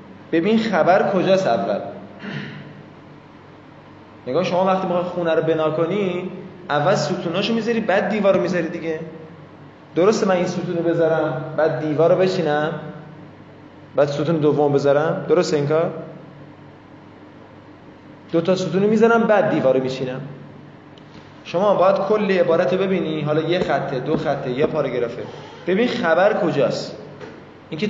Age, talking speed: 20-39, 120 wpm